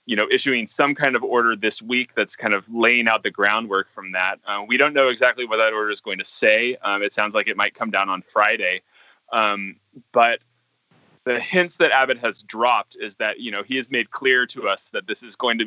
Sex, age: male, 20-39